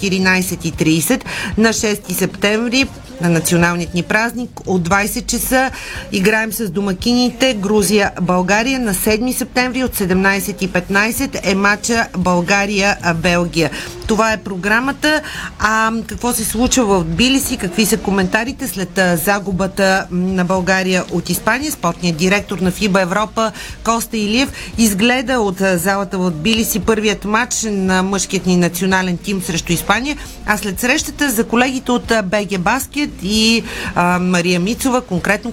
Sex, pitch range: female, 185-230 Hz